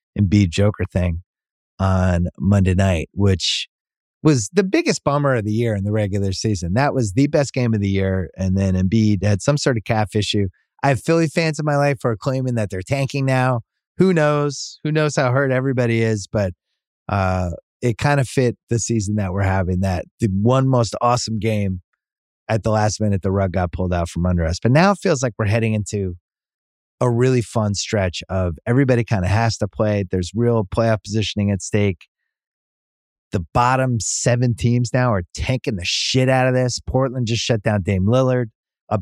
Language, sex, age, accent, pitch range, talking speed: English, male, 30-49, American, 100-125 Hz, 200 wpm